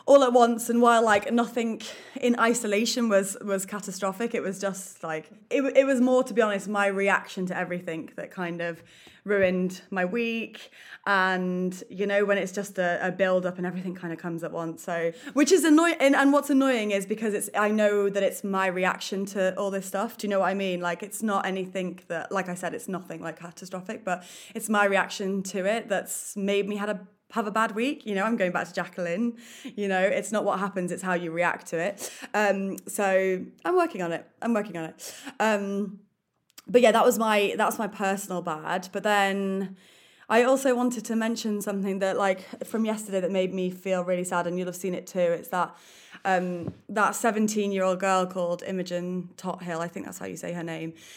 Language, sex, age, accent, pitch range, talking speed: English, female, 20-39, British, 180-215 Hz, 215 wpm